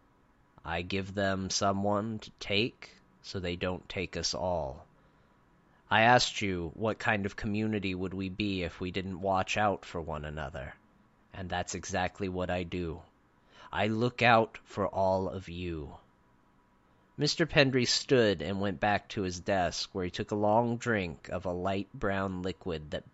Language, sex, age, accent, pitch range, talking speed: English, male, 30-49, American, 90-110 Hz, 165 wpm